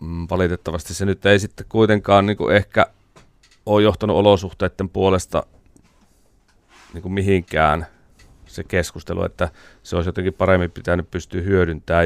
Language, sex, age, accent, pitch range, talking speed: Finnish, male, 30-49, native, 85-95 Hz, 120 wpm